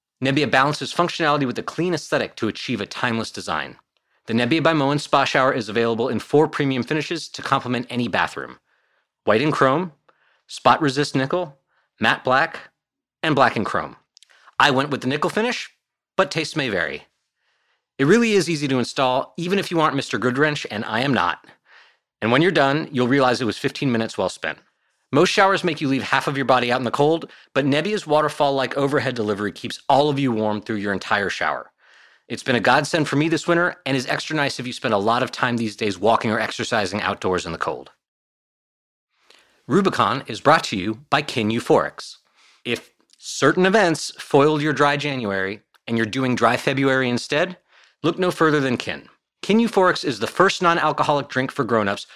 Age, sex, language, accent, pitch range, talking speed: 30-49, male, English, American, 125-155 Hz, 195 wpm